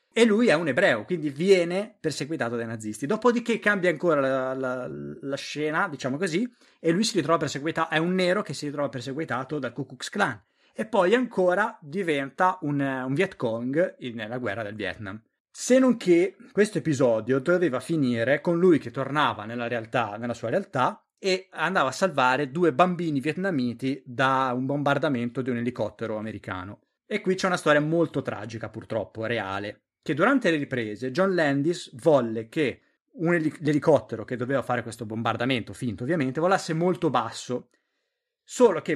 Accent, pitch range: Italian, 125-175 Hz